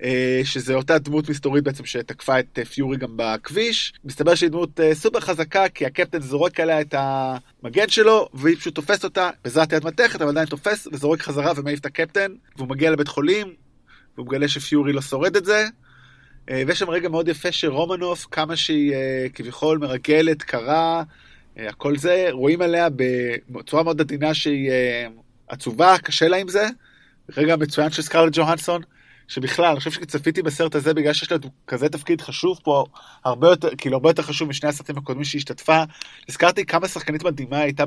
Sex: male